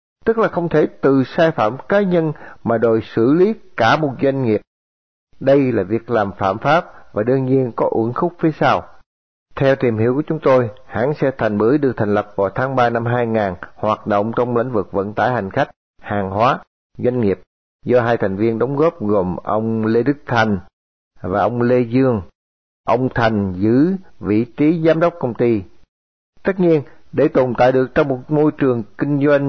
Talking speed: 200 wpm